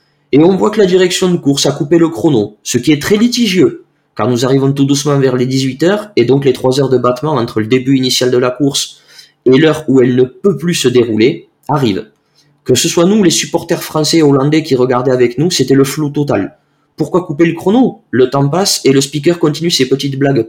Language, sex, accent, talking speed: French, male, French, 235 wpm